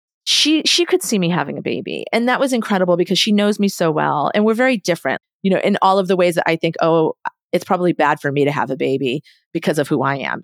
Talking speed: 270 wpm